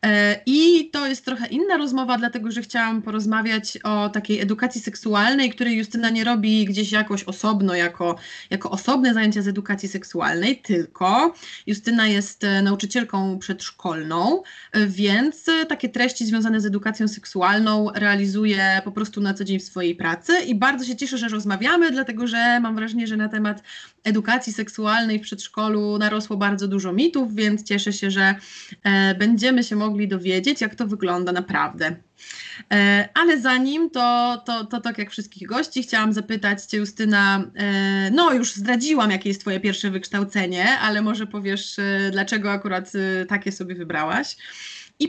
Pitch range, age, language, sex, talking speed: 200-240 Hz, 20-39, Polish, female, 150 wpm